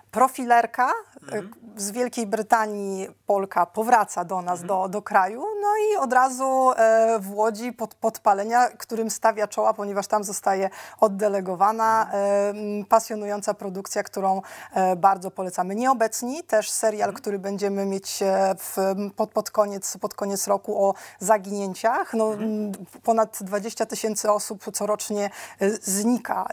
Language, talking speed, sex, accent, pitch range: Polish, 120 wpm, female, native, 195-225 Hz